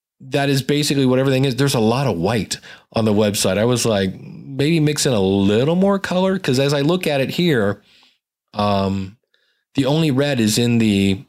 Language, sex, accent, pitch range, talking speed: English, male, American, 115-150 Hz, 200 wpm